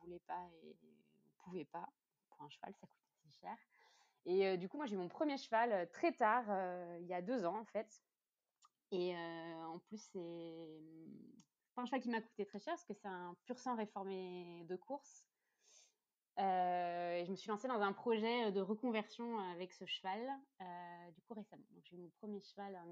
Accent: French